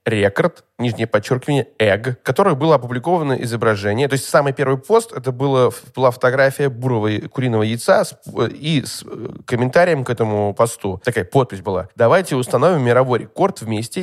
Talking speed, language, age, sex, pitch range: 145 wpm, Russian, 20-39, male, 115-145 Hz